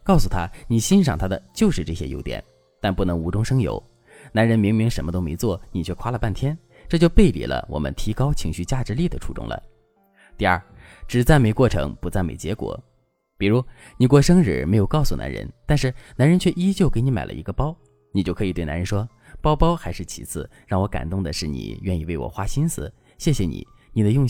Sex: male